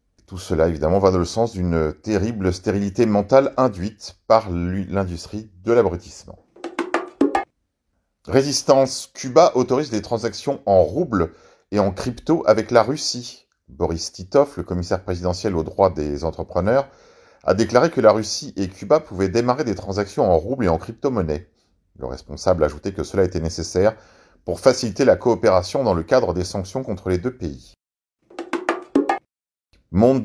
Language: French